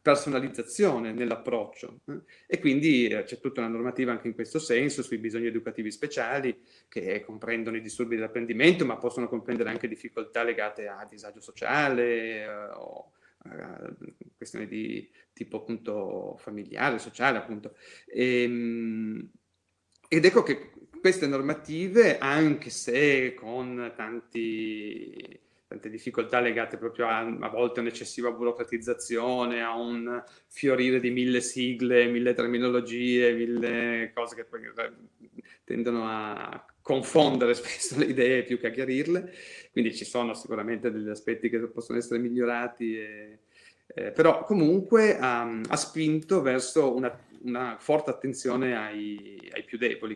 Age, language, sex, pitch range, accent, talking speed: 30-49, Italian, male, 115-130 Hz, native, 125 wpm